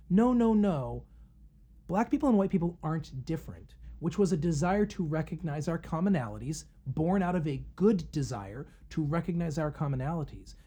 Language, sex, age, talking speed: English, male, 40-59, 160 wpm